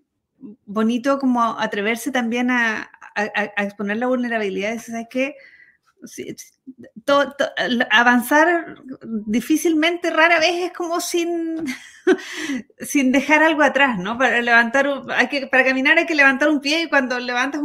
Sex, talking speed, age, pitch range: female, 140 wpm, 30-49, 200-270 Hz